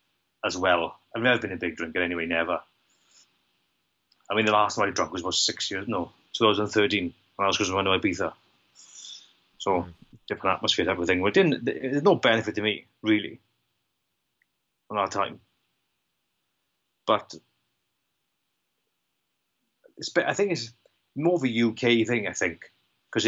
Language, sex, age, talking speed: English, male, 30-49, 150 wpm